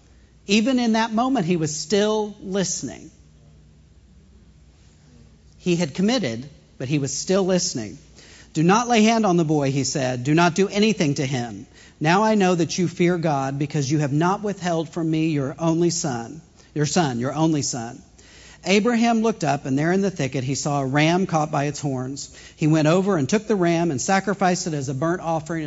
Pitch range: 140-190 Hz